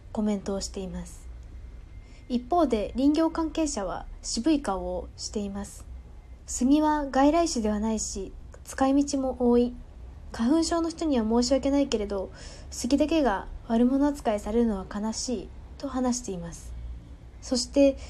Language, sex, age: Japanese, female, 20-39